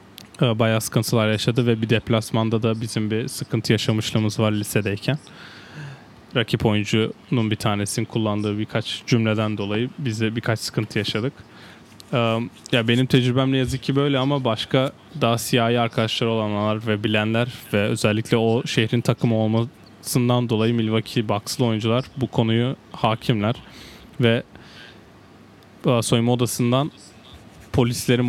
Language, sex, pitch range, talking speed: Turkish, male, 110-130 Hz, 120 wpm